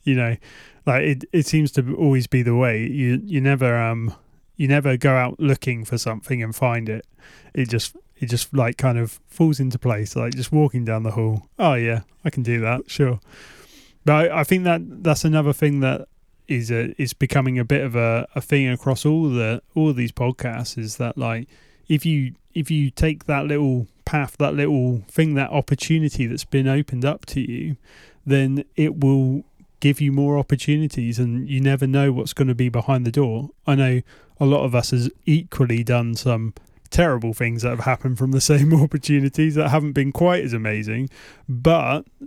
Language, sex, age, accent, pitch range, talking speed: English, male, 30-49, British, 120-145 Hz, 200 wpm